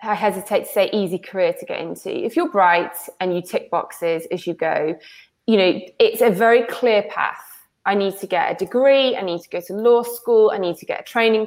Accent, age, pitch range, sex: British, 20-39, 190-245 Hz, female